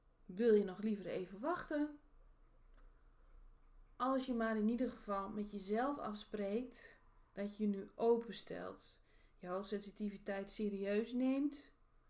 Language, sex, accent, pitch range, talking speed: Dutch, female, Dutch, 185-225 Hz, 120 wpm